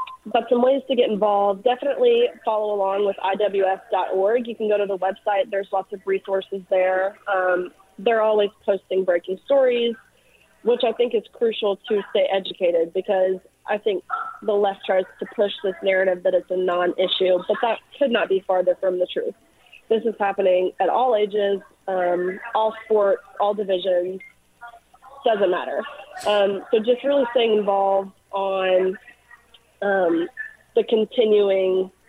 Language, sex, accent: English, female, American